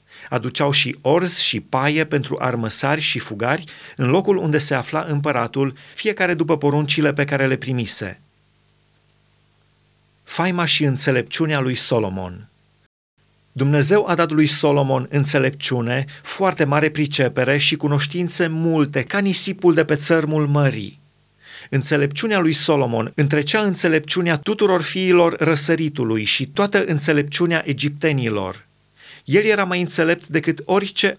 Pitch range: 135-165 Hz